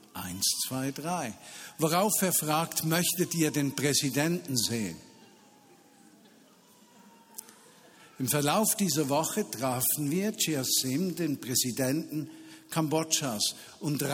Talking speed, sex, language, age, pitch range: 95 wpm, male, German, 50-69, 140-165 Hz